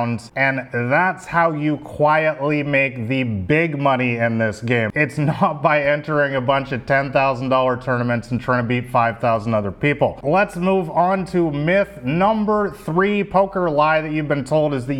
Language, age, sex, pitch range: English, 30-49, male, 125-160 Hz